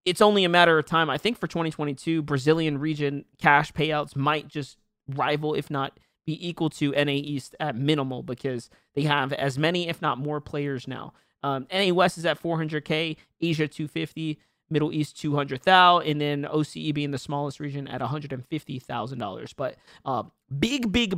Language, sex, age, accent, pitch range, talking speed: English, male, 30-49, American, 145-175 Hz, 175 wpm